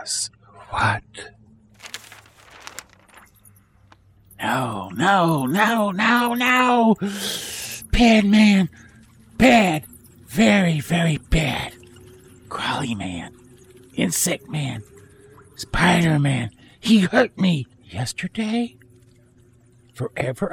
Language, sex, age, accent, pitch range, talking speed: English, male, 50-69, American, 105-155 Hz, 65 wpm